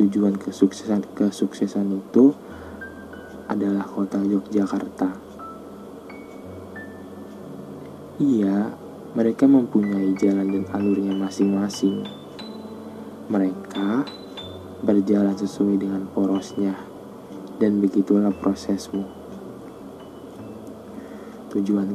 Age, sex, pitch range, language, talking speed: 20-39, male, 95-105 Hz, Indonesian, 65 wpm